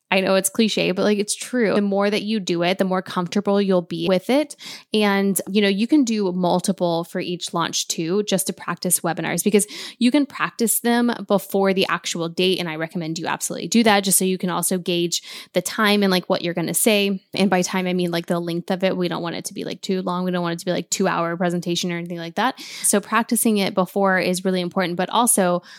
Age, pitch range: 10-29, 175-205 Hz